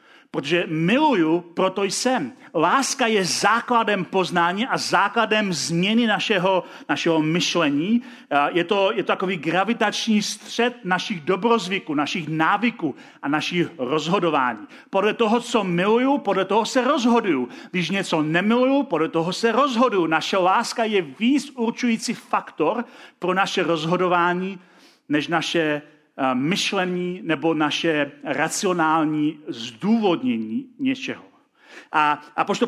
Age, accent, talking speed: 40-59, native, 115 wpm